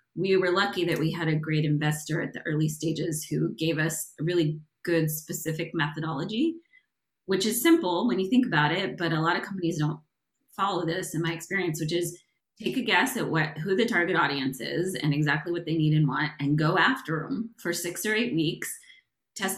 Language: English